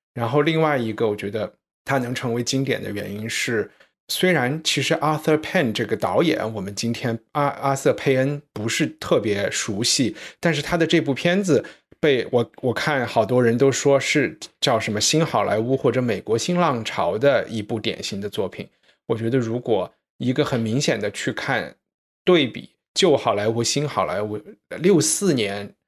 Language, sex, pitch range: Chinese, male, 110-145 Hz